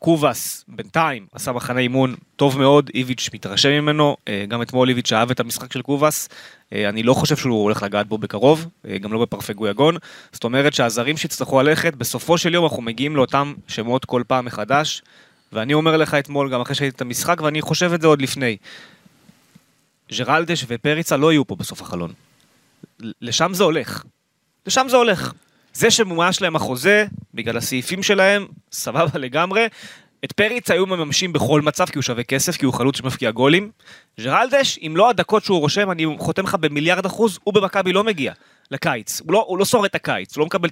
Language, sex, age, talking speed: Hebrew, male, 20-39, 170 wpm